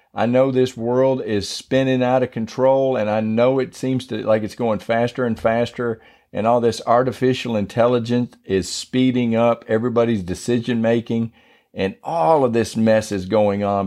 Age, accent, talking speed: 50-69, American, 175 wpm